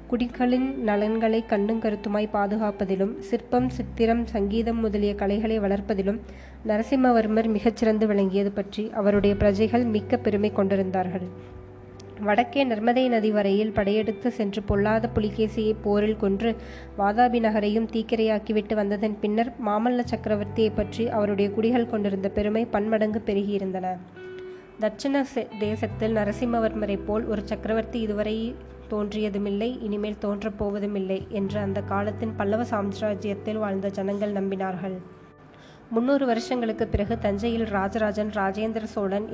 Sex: female